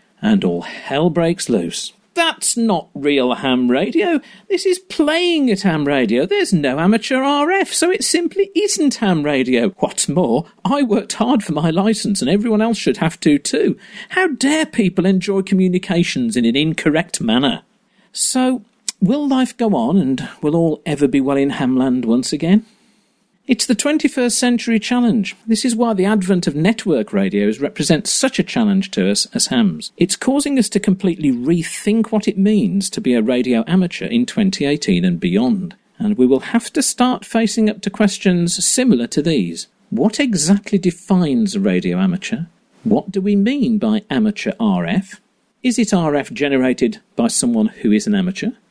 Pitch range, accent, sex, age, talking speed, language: 175-235 Hz, British, male, 50-69, 170 wpm, English